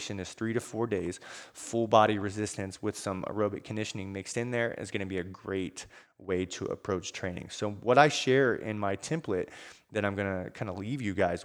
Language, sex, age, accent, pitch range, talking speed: English, male, 20-39, American, 95-120 Hz, 215 wpm